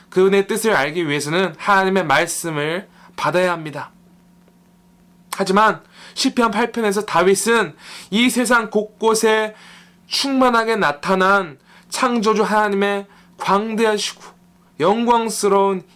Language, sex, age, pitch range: Korean, male, 20-39, 175-205 Hz